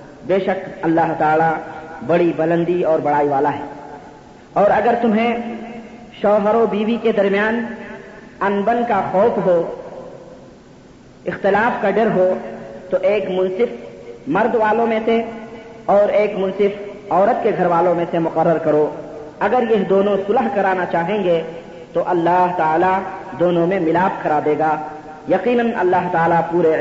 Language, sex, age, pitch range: Urdu, female, 40-59, 170-215 Hz